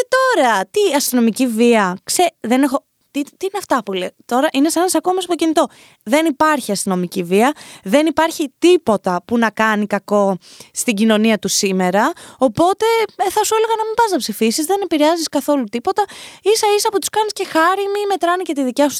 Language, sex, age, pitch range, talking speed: Greek, female, 20-39, 220-360 Hz, 200 wpm